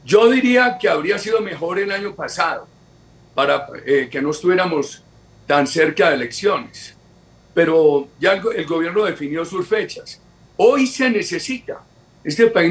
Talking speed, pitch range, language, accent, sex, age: 135 wpm, 145-210 Hz, Spanish, Colombian, male, 50-69